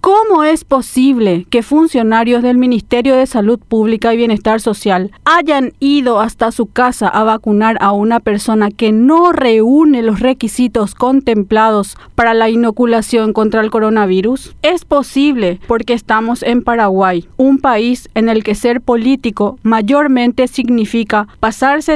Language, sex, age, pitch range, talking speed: Spanish, female, 40-59, 220-270 Hz, 140 wpm